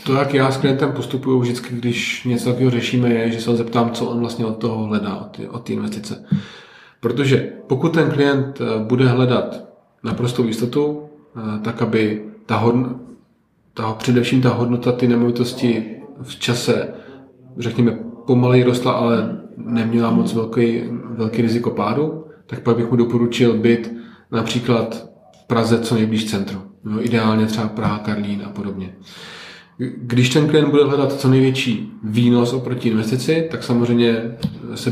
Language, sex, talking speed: Czech, male, 150 wpm